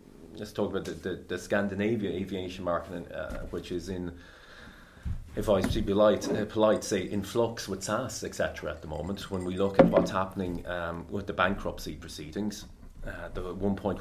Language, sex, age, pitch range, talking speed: English, male, 30-49, 90-110 Hz, 190 wpm